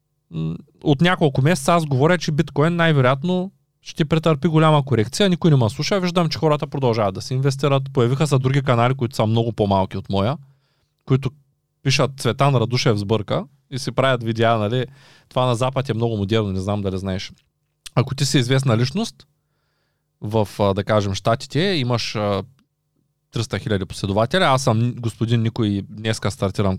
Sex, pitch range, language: male, 115-150 Hz, Bulgarian